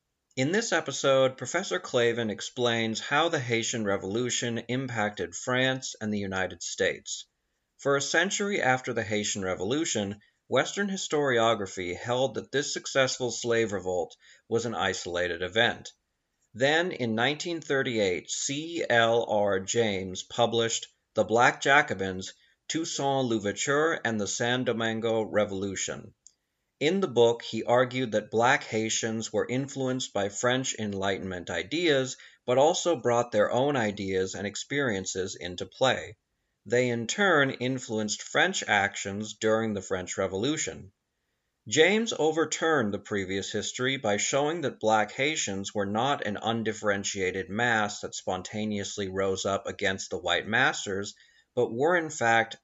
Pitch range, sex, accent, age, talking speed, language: 105-130 Hz, male, American, 40-59, 130 wpm, English